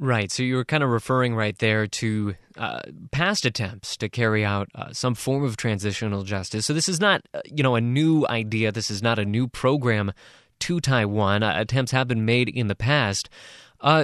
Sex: male